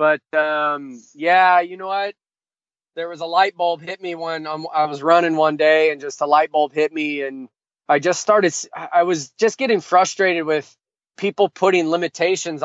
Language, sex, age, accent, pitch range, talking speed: English, male, 20-39, American, 150-180 Hz, 190 wpm